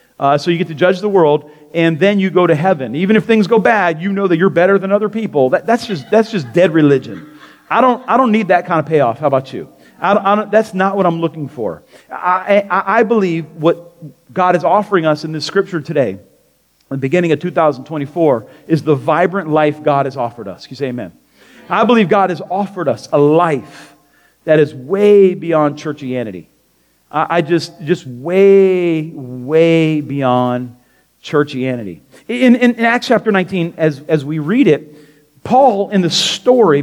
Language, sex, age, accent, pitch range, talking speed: English, male, 40-59, American, 150-190 Hz, 195 wpm